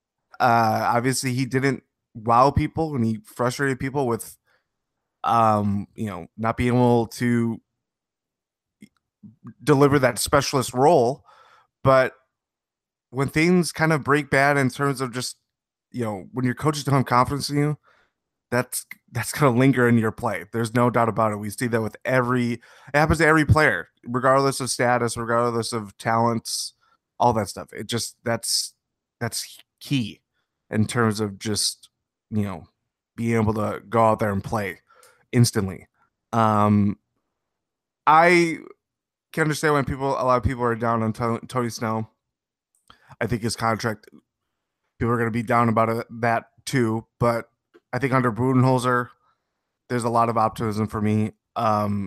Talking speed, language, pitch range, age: 155 wpm, English, 110-135 Hz, 20-39